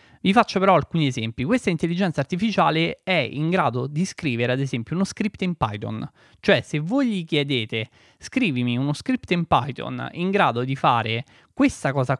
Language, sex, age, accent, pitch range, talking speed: Italian, male, 20-39, native, 125-165 Hz, 170 wpm